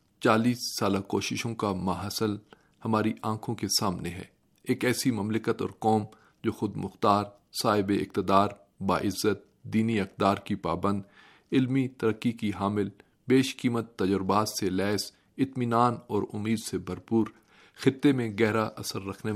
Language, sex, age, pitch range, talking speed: Urdu, male, 40-59, 100-120 Hz, 135 wpm